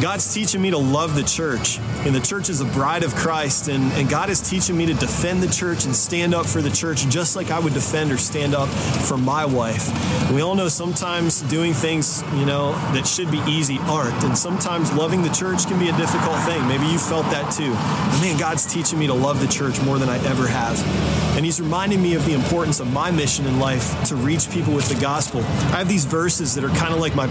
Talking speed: 245 wpm